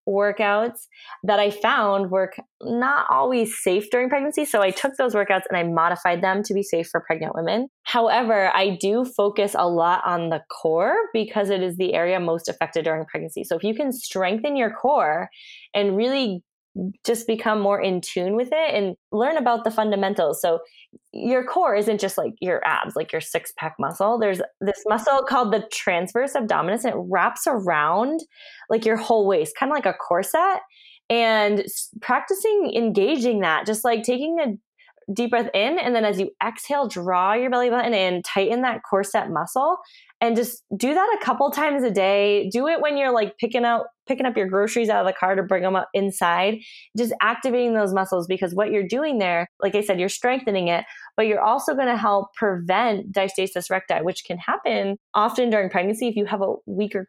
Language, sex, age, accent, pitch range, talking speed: English, female, 20-39, American, 190-240 Hz, 195 wpm